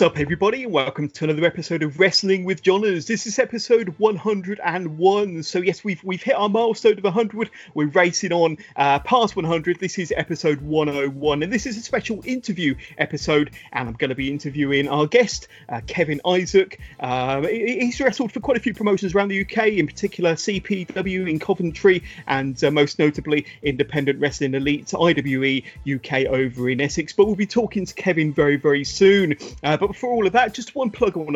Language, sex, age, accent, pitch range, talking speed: English, male, 30-49, British, 145-200 Hz, 190 wpm